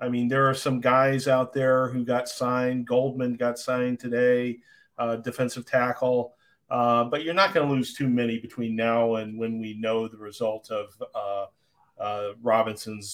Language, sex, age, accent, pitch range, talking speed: English, male, 40-59, American, 125-155 Hz, 180 wpm